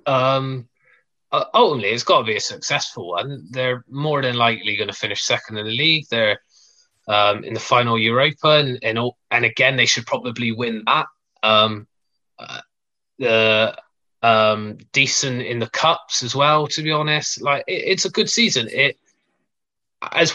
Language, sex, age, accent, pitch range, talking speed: English, male, 20-39, British, 115-140 Hz, 170 wpm